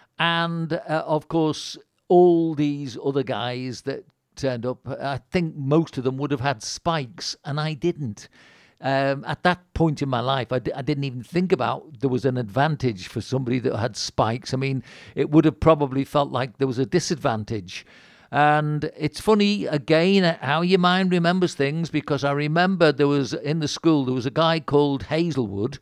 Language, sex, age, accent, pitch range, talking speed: English, male, 50-69, British, 135-165 Hz, 185 wpm